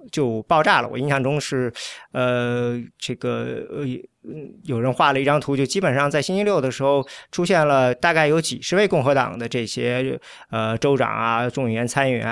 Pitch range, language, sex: 120-155 Hz, Chinese, male